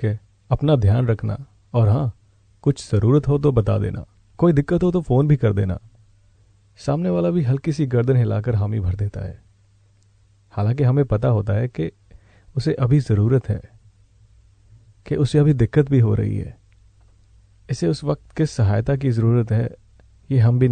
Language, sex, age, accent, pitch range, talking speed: Hindi, male, 40-59, native, 100-130 Hz, 170 wpm